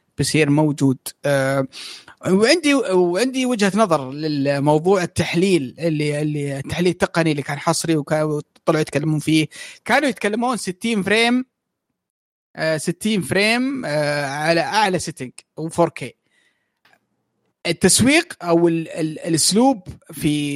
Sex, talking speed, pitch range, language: male, 110 wpm, 150-200 Hz, Arabic